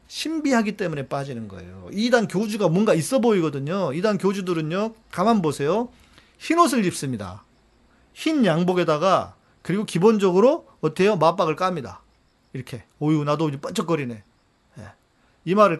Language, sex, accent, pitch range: Korean, male, native, 155-220 Hz